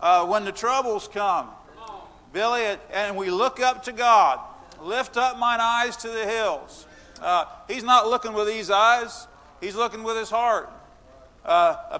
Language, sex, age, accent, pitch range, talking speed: English, male, 50-69, American, 210-250 Hz, 165 wpm